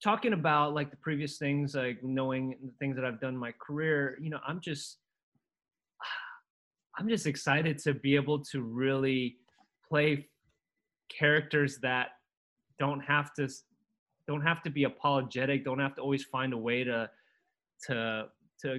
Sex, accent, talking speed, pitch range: male, American, 155 wpm, 125-150 Hz